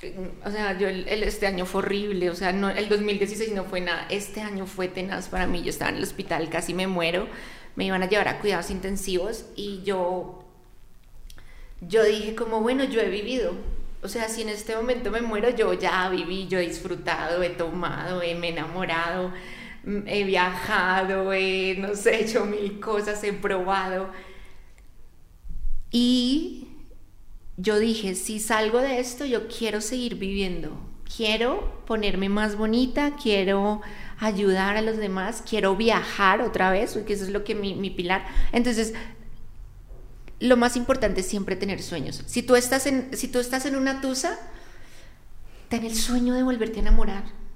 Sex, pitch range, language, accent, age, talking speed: female, 190-235 Hz, Spanish, Colombian, 30-49, 160 wpm